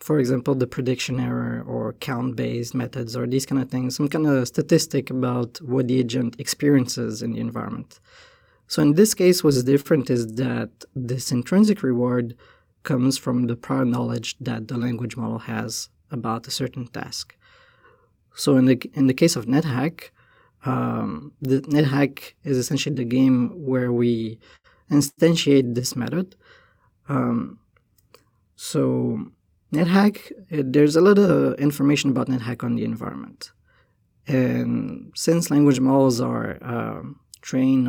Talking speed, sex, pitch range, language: 145 wpm, male, 120-145 Hz, English